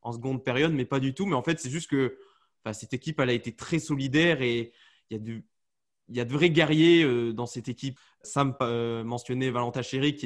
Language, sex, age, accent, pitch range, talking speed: French, male, 20-39, French, 120-155 Hz, 230 wpm